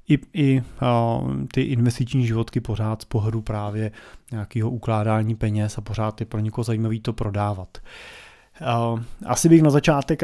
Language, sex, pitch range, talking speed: Czech, male, 115-135 Hz, 150 wpm